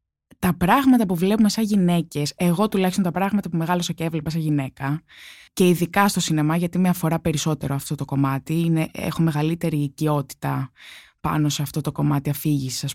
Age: 20-39